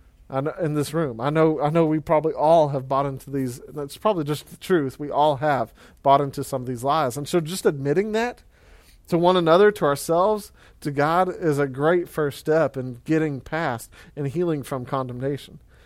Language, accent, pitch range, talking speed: English, American, 135-175 Hz, 210 wpm